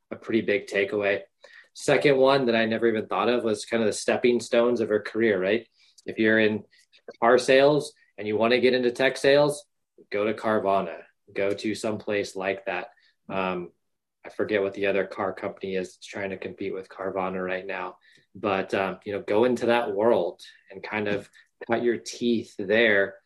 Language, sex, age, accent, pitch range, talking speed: English, male, 20-39, American, 100-120 Hz, 190 wpm